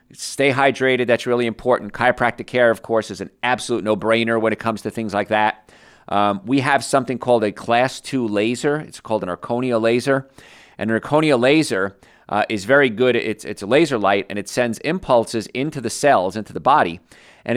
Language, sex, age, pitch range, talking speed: English, male, 50-69, 110-130 Hz, 200 wpm